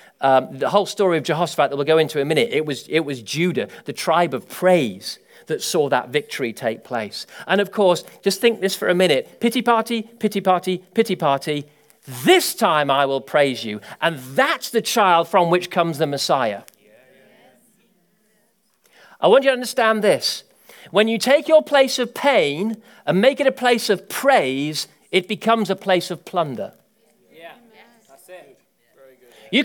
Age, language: 40-59, English